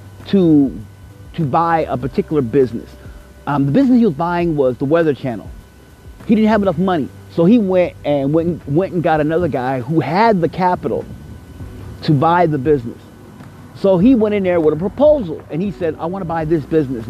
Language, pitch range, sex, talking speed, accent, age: English, 135-175 Hz, male, 195 wpm, American, 30-49